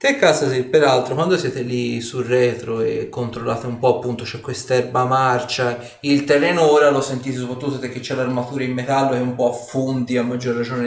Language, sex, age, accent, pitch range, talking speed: Italian, male, 30-49, native, 120-145 Hz, 195 wpm